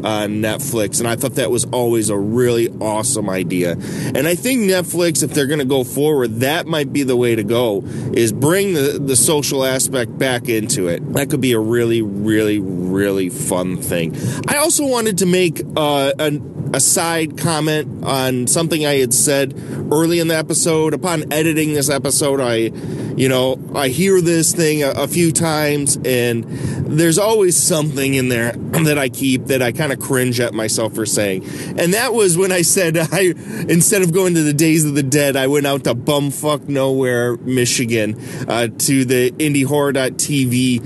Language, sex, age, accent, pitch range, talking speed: English, male, 30-49, American, 125-165 Hz, 180 wpm